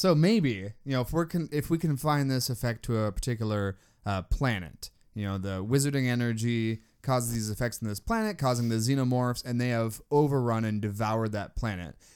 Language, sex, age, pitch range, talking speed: English, male, 20-39, 110-140 Hz, 195 wpm